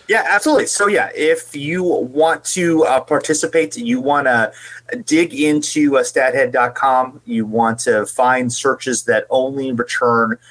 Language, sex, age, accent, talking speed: English, male, 30-49, American, 145 wpm